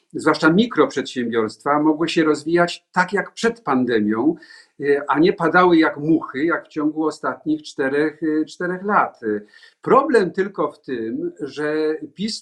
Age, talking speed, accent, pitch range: 50-69, 125 wpm, native, 145-210 Hz